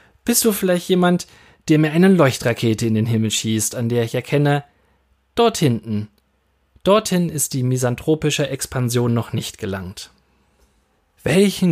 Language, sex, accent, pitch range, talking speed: German, male, German, 110-150 Hz, 140 wpm